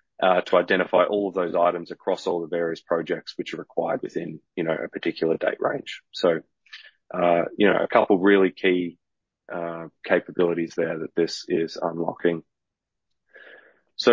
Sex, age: male, 20-39